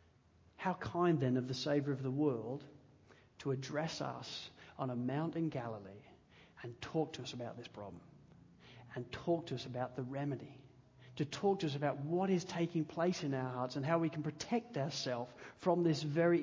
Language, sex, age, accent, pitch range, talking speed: English, male, 40-59, Australian, 140-180 Hz, 190 wpm